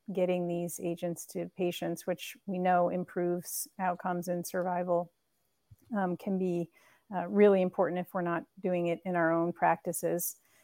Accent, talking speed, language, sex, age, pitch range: American, 150 wpm, English, female, 40-59, 175-190 Hz